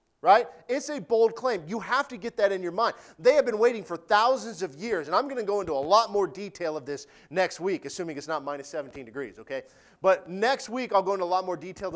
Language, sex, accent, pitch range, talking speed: English, male, American, 190-255 Hz, 260 wpm